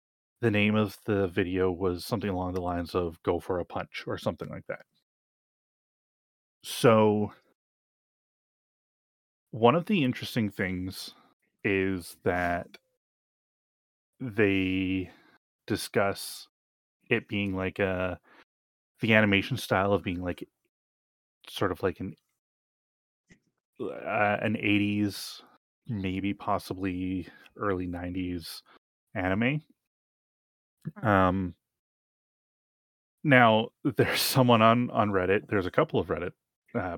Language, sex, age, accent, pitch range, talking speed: English, male, 30-49, American, 90-110 Hz, 105 wpm